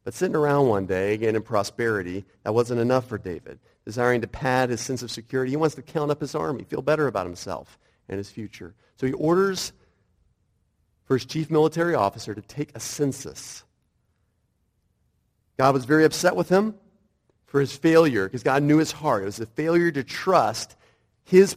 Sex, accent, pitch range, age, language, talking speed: male, American, 105-145 Hz, 40-59, English, 185 wpm